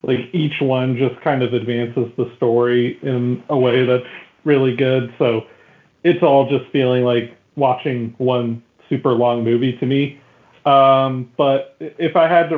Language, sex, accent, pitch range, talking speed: English, male, American, 125-150 Hz, 160 wpm